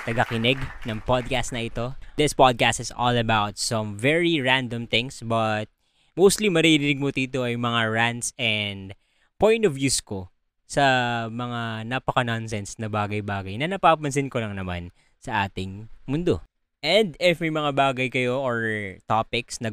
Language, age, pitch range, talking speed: Filipino, 20-39, 105-135 Hz, 150 wpm